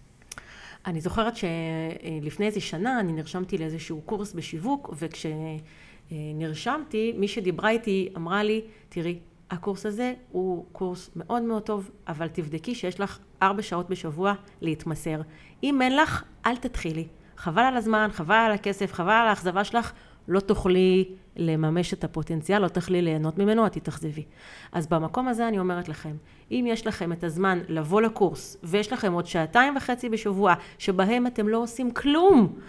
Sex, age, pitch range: female, 30-49, 165-220 Hz